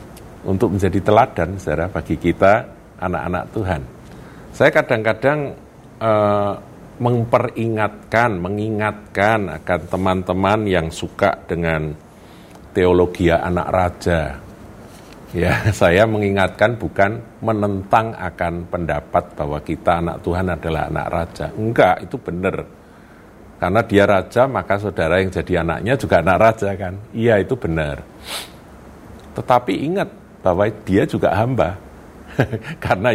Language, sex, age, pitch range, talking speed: Indonesian, male, 50-69, 85-110 Hz, 105 wpm